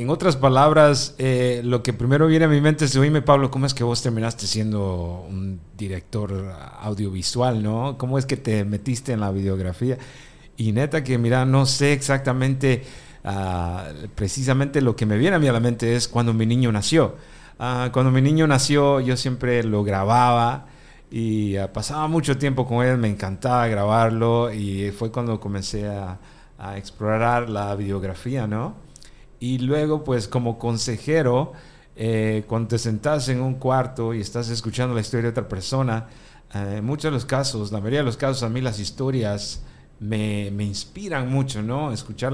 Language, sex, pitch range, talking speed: Spanish, male, 110-135 Hz, 175 wpm